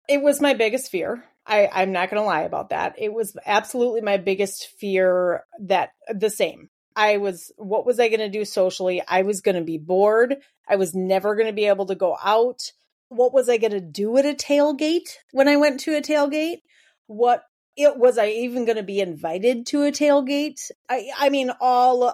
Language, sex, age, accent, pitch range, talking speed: English, female, 30-49, American, 200-285 Hz, 210 wpm